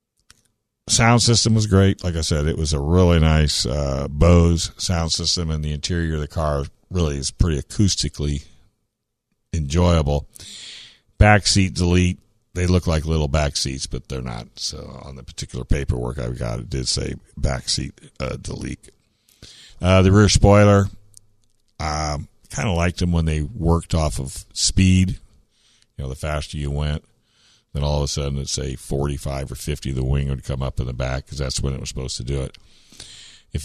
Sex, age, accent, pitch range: male, 60-79, American, 75-100 Hz